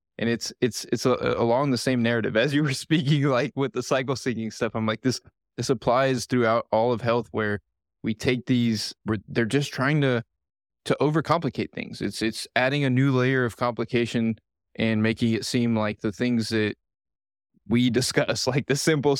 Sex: male